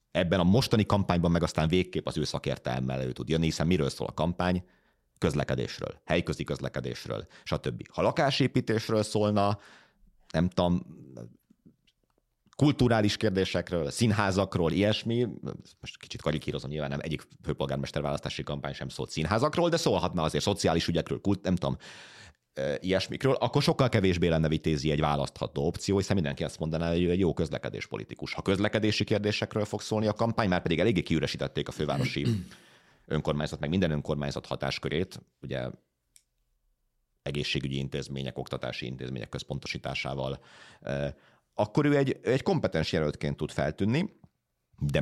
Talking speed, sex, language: 135 wpm, male, Hungarian